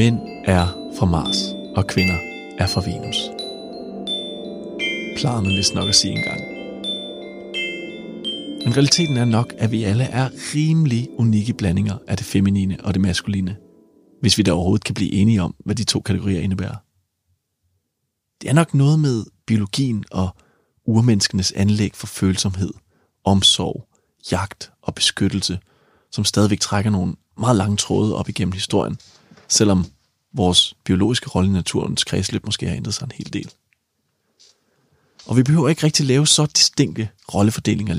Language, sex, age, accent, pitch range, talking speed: Danish, male, 30-49, native, 95-115 Hz, 145 wpm